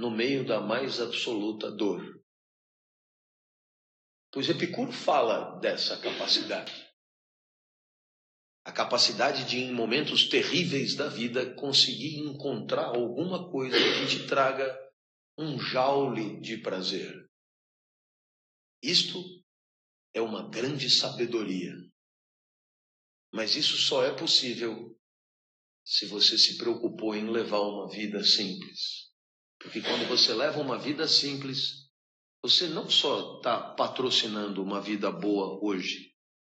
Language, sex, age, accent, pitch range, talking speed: Portuguese, male, 40-59, Brazilian, 110-170 Hz, 105 wpm